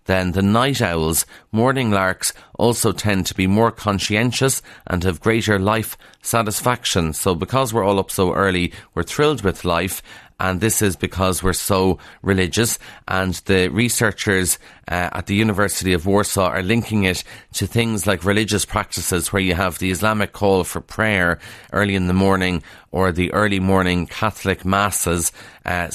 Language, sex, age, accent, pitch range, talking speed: English, male, 30-49, Irish, 90-105 Hz, 165 wpm